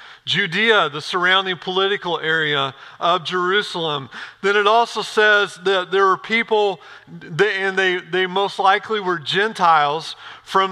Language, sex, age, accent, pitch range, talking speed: English, male, 40-59, American, 165-210 Hz, 130 wpm